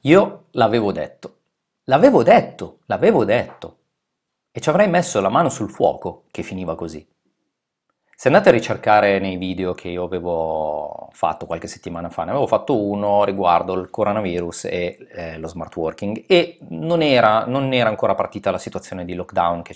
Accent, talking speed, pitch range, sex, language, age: native, 165 wpm, 90-115 Hz, male, Italian, 30-49